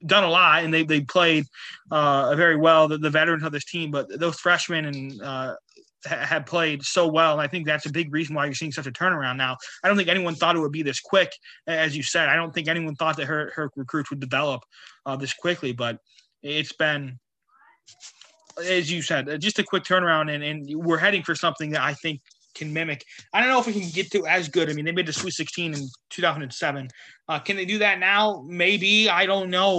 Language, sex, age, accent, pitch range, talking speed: English, male, 20-39, American, 145-180 Hz, 235 wpm